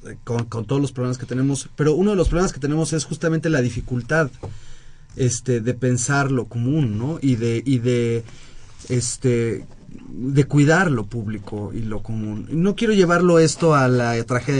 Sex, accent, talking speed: male, Mexican, 175 wpm